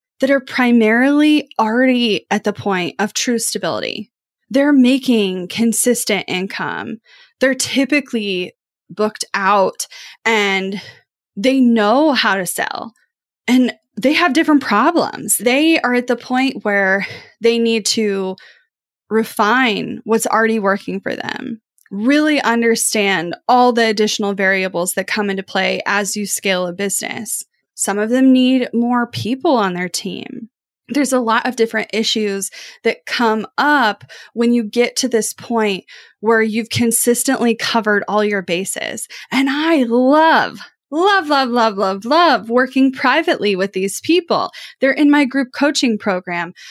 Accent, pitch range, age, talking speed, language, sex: American, 210-265 Hz, 10-29, 140 wpm, English, female